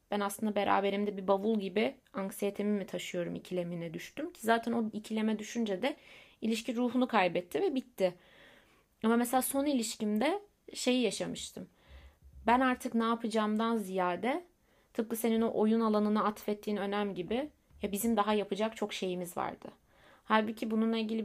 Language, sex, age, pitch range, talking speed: Turkish, female, 30-49, 195-235 Hz, 145 wpm